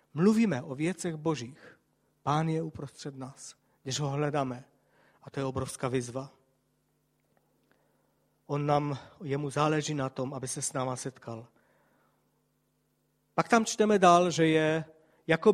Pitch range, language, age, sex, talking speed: 140-185 Hz, Czech, 40-59, male, 130 wpm